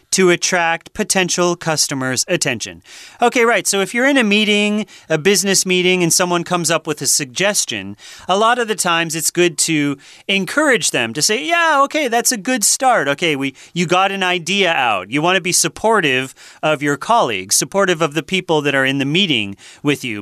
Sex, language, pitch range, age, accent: male, Chinese, 150-195 Hz, 30-49, American